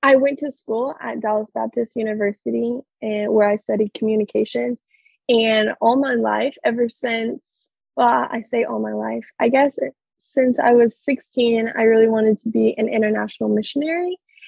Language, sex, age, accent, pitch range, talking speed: English, female, 10-29, American, 210-245 Hz, 160 wpm